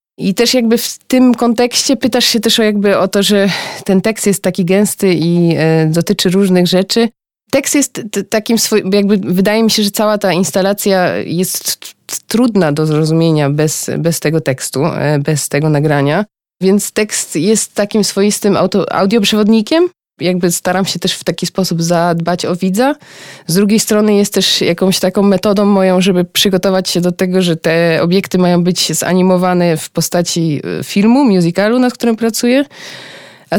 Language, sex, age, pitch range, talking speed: Polish, female, 20-39, 180-220 Hz, 165 wpm